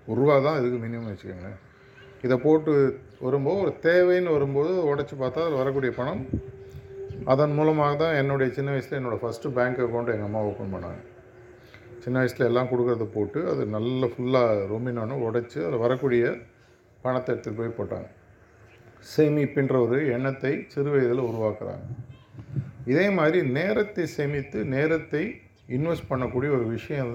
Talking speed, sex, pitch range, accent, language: 140 wpm, male, 110-140 Hz, native, Tamil